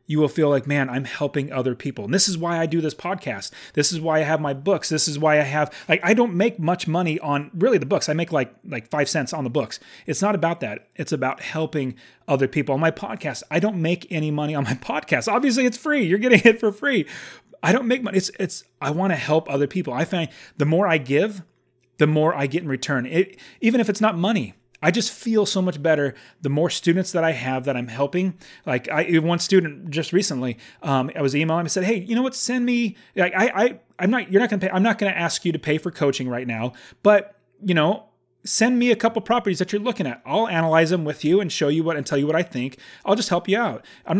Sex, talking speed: male, 260 wpm